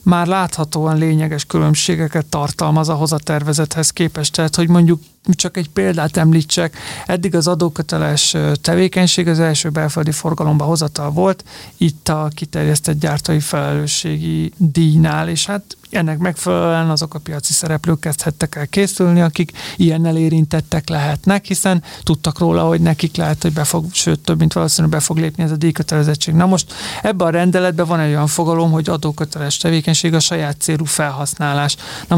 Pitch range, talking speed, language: 155-175 Hz, 150 wpm, Hungarian